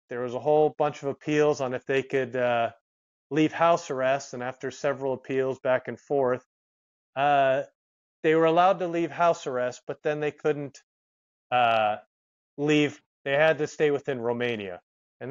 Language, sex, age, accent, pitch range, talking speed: English, male, 30-49, American, 120-150 Hz, 170 wpm